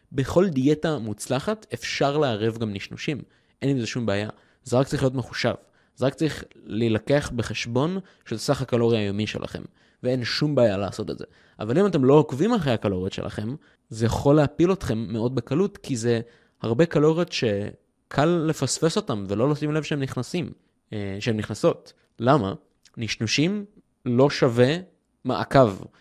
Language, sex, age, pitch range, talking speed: Hebrew, male, 20-39, 115-155 Hz, 155 wpm